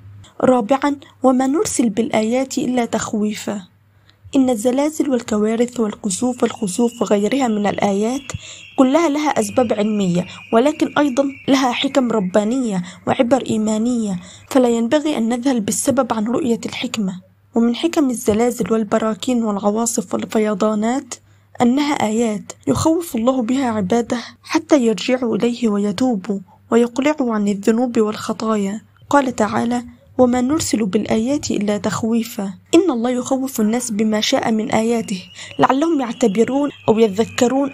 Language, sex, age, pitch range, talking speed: Arabic, female, 20-39, 220-265 Hz, 115 wpm